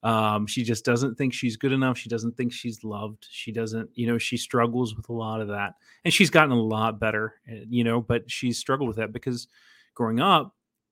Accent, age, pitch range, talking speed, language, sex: American, 30-49, 110-125 Hz, 220 wpm, English, male